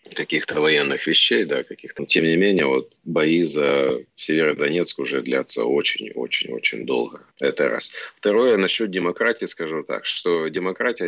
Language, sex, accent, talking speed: Russian, male, native, 155 wpm